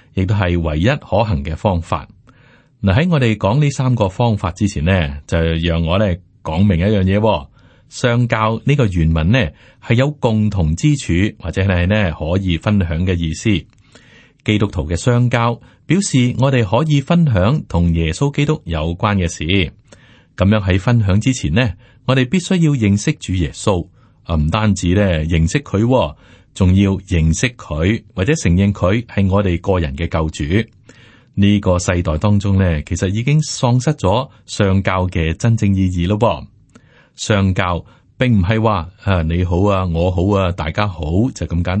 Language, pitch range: Chinese, 85-115 Hz